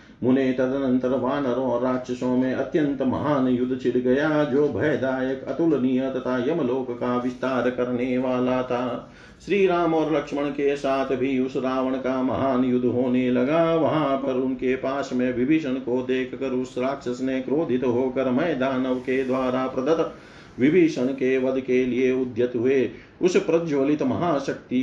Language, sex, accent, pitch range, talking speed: Hindi, male, native, 125-140 Hz, 130 wpm